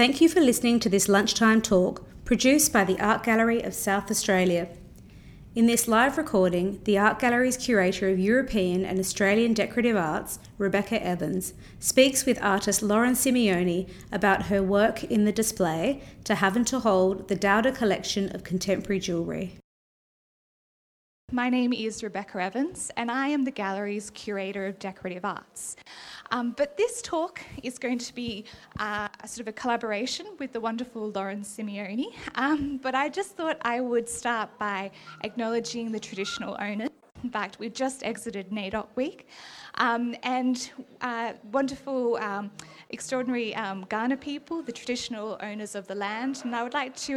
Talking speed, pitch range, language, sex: 160 wpm, 200-255 Hz, English, female